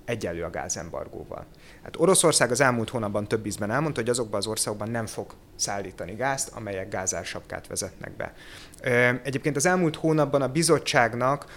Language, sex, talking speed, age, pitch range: Hungarian, male, 150 wpm, 30-49, 110-135 Hz